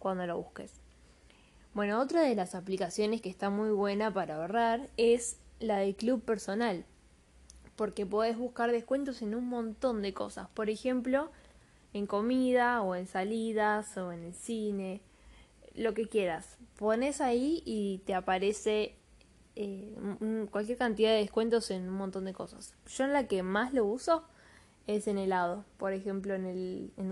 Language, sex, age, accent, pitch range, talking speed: Spanish, female, 10-29, Argentinian, 185-225 Hz, 160 wpm